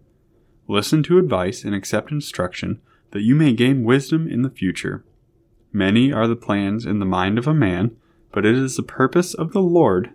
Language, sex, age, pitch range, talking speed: English, male, 20-39, 100-130 Hz, 190 wpm